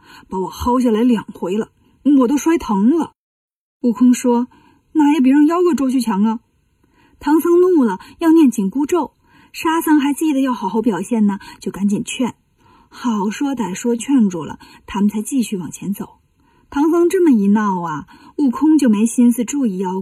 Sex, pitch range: female, 220-300 Hz